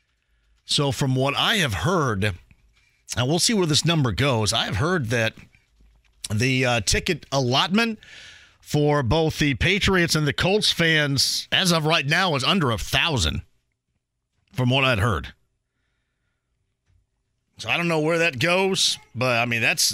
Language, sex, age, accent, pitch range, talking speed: English, male, 40-59, American, 120-155 Hz, 160 wpm